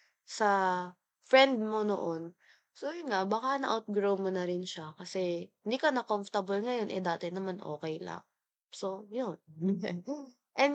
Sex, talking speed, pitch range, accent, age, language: female, 145 wpm, 190-245 Hz, native, 20-39, Filipino